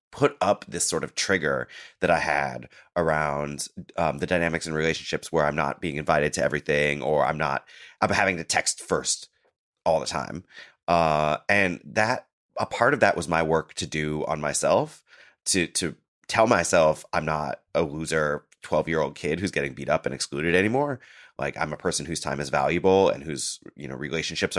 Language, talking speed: English, 190 wpm